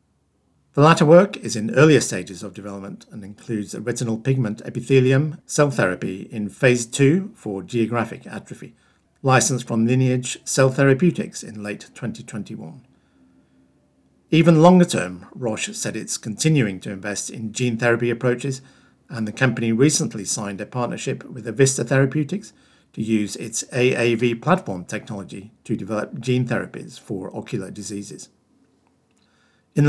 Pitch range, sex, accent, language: 110-140 Hz, male, British, English